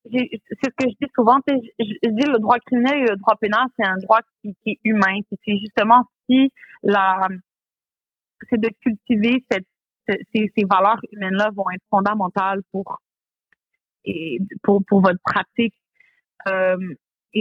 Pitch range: 195-230 Hz